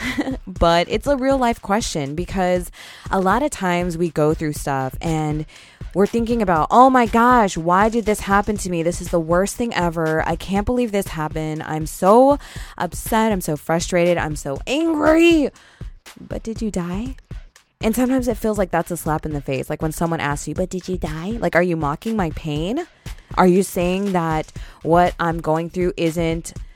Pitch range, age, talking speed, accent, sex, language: 165-235 Hz, 20-39, 195 wpm, American, female, English